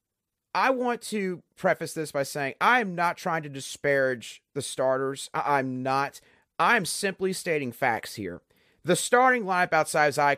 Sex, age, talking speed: male, 30-49, 160 wpm